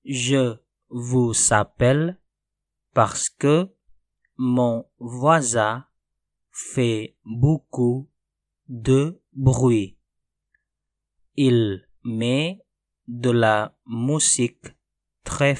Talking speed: 65 wpm